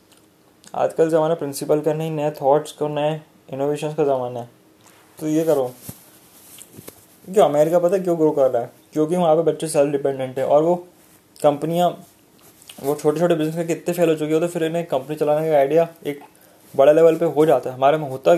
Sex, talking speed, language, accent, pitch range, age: male, 205 wpm, Hindi, native, 140-165 Hz, 20-39